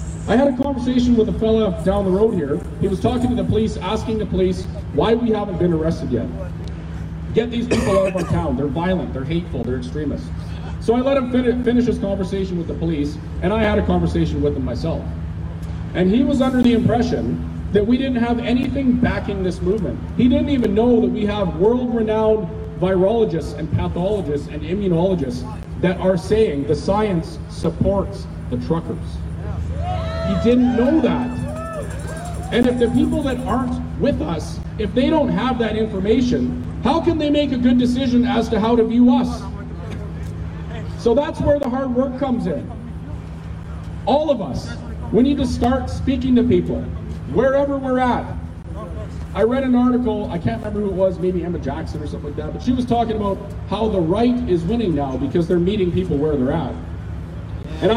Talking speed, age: 185 wpm, 40-59